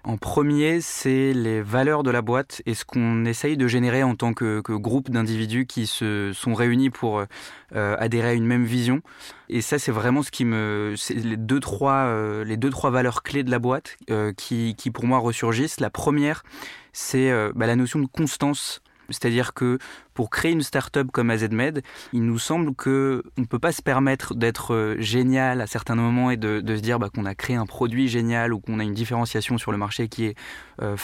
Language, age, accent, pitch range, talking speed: French, 20-39, French, 115-135 Hz, 215 wpm